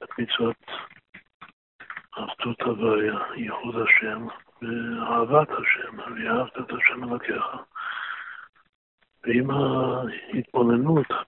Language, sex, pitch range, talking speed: Hebrew, male, 120-130 Hz, 80 wpm